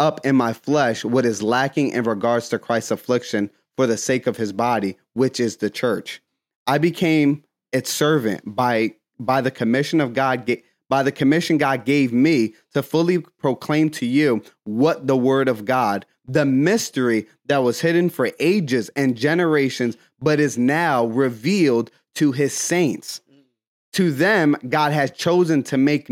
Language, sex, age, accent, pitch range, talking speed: English, male, 30-49, American, 125-170 Hz, 165 wpm